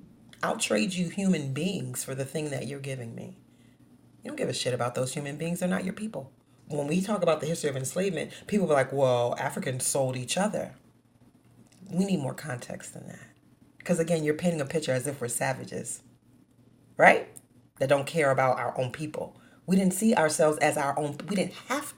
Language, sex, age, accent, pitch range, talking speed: English, female, 40-59, American, 130-165 Hz, 205 wpm